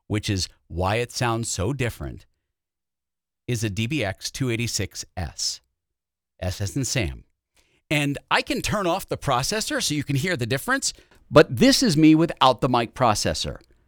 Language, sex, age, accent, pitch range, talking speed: English, male, 50-69, American, 90-135 Hz, 150 wpm